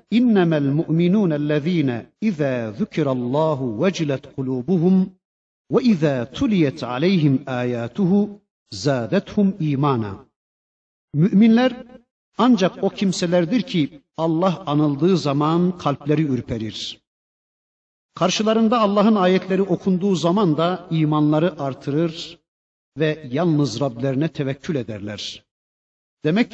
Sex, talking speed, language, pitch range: male, 85 wpm, Turkish, 140-185 Hz